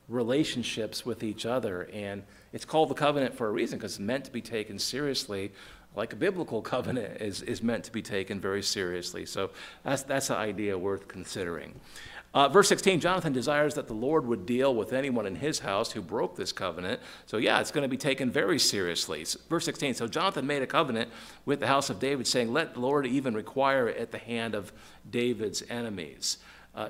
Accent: American